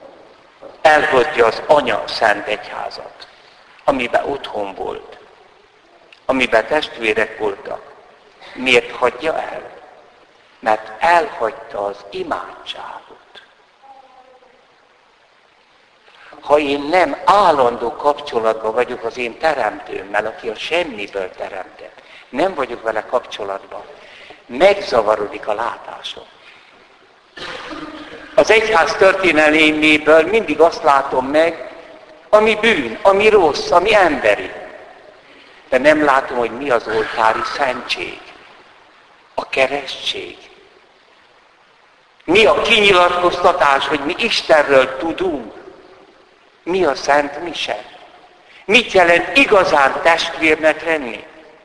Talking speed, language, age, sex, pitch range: 90 wpm, Hungarian, 60-79, male, 140-210 Hz